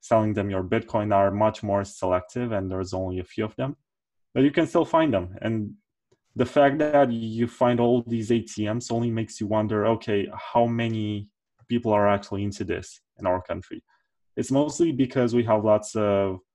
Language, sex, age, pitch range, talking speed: English, male, 20-39, 95-115 Hz, 190 wpm